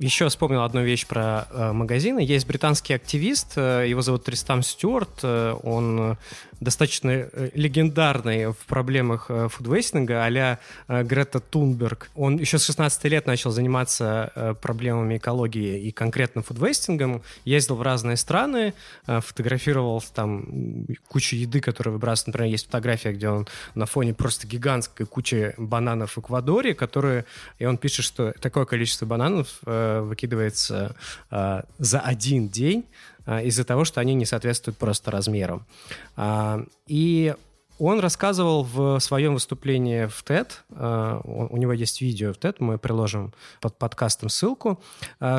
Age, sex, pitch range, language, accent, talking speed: 20-39, male, 115-140 Hz, Russian, native, 145 wpm